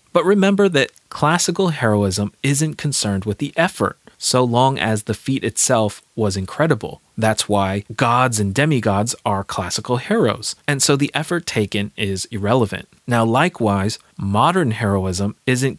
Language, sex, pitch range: English, male, 105-140 Hz